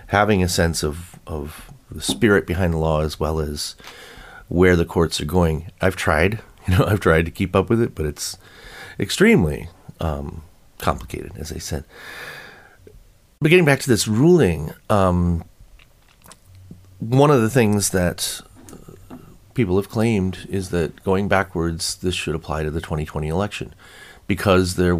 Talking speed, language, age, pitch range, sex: 160 wpm, English, 40-59, 80-95 Hz, male